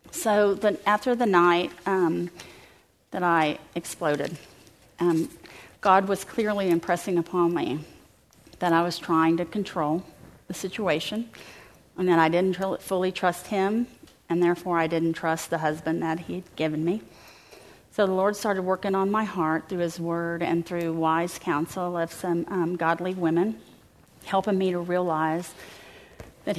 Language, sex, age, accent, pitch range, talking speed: English, female, 40-59, American, 165-190 Hz, 155 wpm